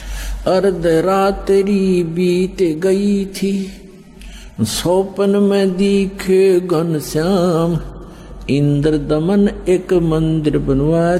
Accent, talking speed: native, 80 wpm